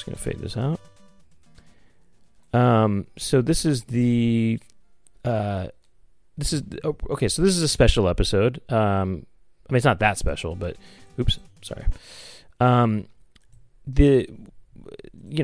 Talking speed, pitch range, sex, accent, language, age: 130 wpm, 90-115 Hz, male, American, English, 30-49